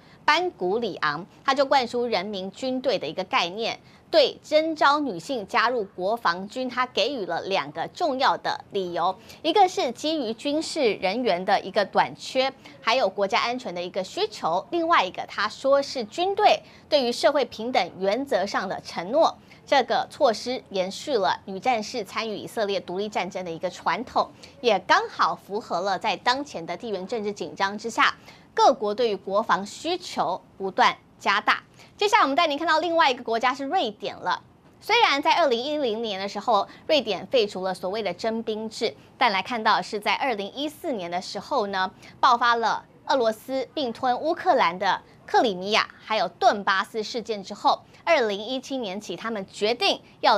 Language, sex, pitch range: Chinese, female, 205-285 Hz